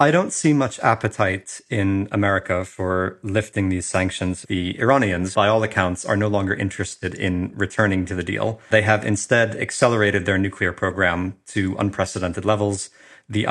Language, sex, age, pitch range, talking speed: English, male, 30-49, 95-105 Hz, 160 wpm